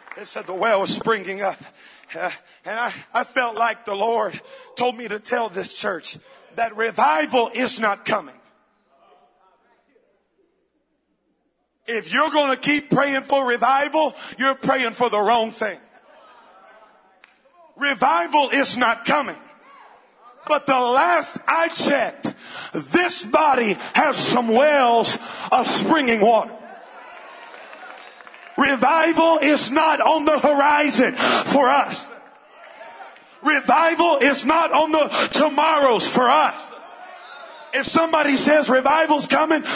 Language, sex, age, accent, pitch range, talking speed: English, male, 50-69, American, 250-310 Hz, 120 wpm